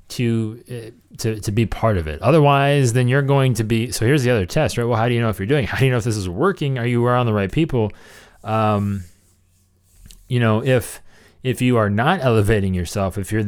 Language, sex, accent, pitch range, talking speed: English, male, American, 100-130 Hz, 235 wpm